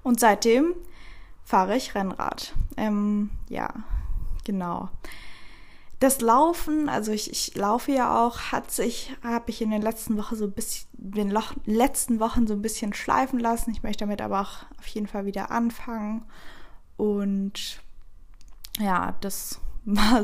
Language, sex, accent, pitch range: German, female, German, 205-250 Hz